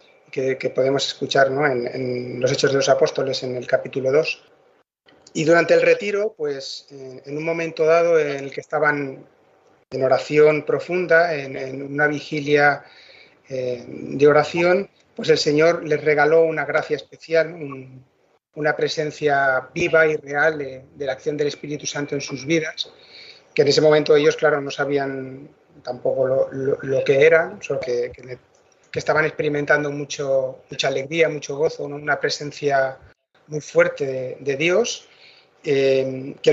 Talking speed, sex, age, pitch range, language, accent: 165 wpm, male, 30-49, 135-165 Hz, Spanish, Spanish